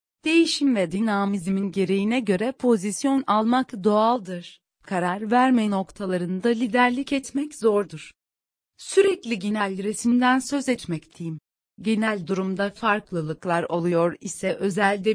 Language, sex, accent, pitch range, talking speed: Turkish, female, native, 185-245 Hz, 100 wpm